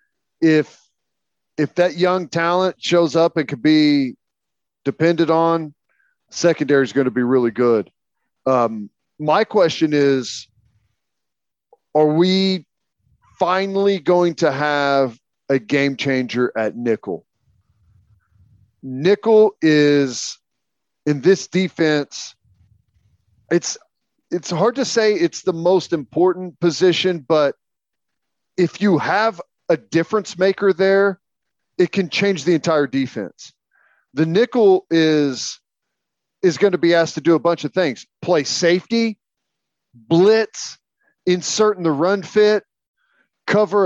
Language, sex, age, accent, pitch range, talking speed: English, male, 40-59, American, 145-190 Hz, 120 wpm